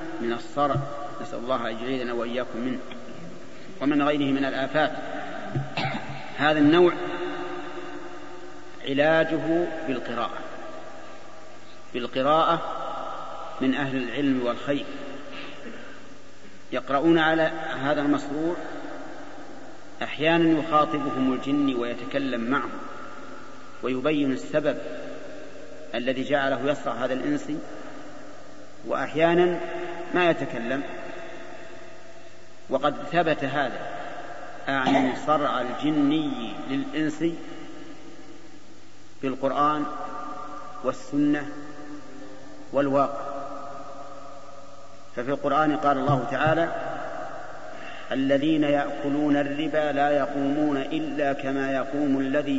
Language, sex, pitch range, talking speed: Arabic, male, 140-170 Hz, 75 wpm